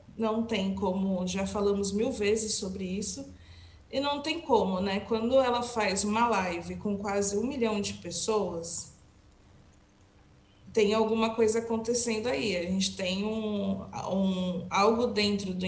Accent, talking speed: Brazilian, 145 wpm